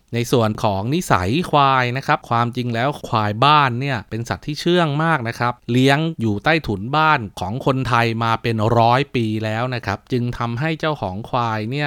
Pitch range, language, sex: 110-140 Hz, Thai, male